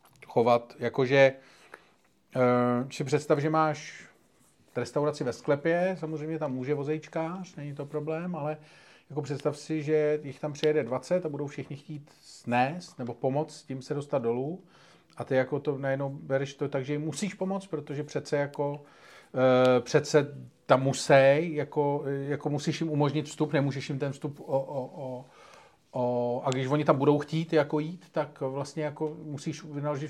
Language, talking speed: Czech, 165 wpm